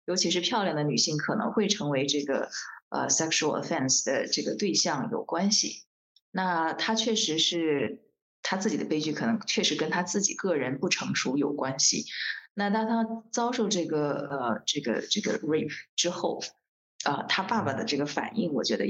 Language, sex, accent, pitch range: Chinese, female, native, 150-215 Hz